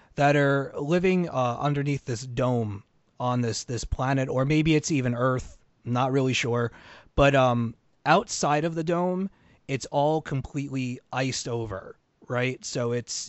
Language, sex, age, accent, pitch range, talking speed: English, male, 30-49, American, 120-150 Hz, 150 wpm